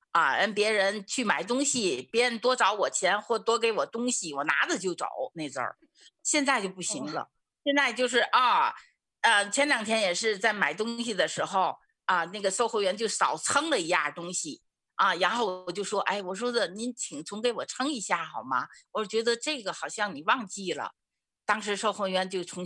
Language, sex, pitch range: Chinese, female, 180-245 Hz